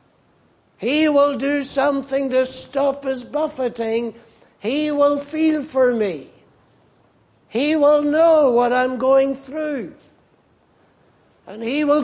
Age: 60-79